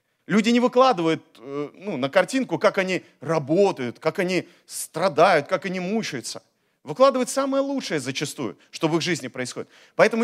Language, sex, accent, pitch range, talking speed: Russian, male, native, 170-225 Hz, 145 wpm